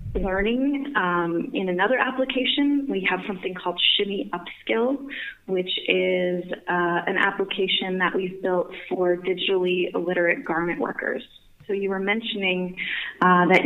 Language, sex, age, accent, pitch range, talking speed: English, female, 30-49, American, 175-220 Hz, 130 wpm